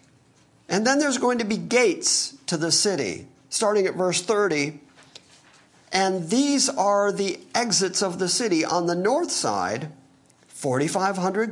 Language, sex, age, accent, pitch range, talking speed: English, male, 50-69, American, 150-225 Hz, 140 wpm